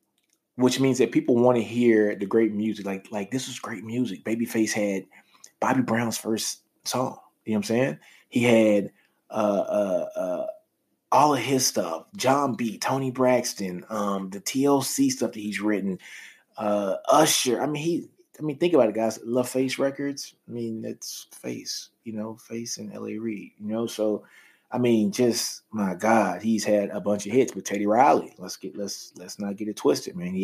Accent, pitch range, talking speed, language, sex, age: American, 100-125 Hz, 190 wpm, English, male, 20-39